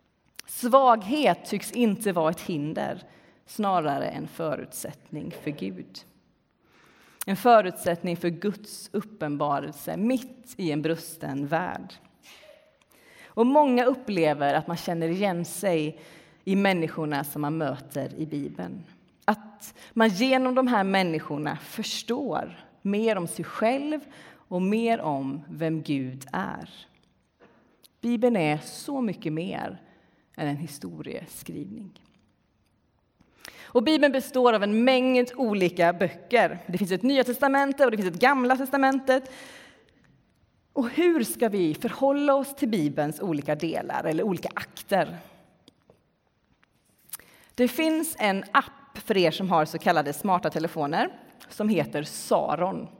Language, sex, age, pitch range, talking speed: Swedish, female, 30-49, 165-255 Hz, 120 wpm